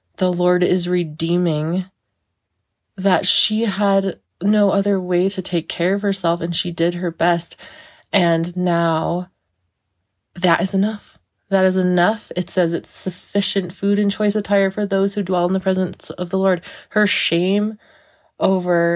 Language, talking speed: English, 155 wpm